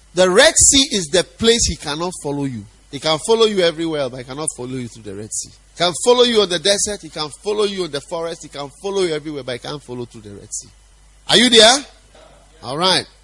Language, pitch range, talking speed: English, 135-210 Hz, 250 wpm